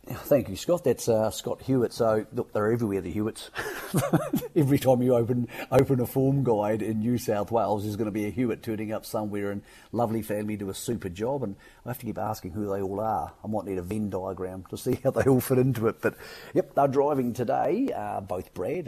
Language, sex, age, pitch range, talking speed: English, male, 50-69, 95-120 Hz, 230 wpm